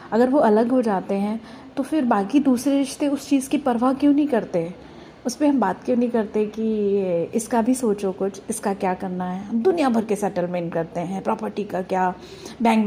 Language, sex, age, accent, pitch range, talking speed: Hindi, female, 30-49, native, 195-255 Hz, 210 wpm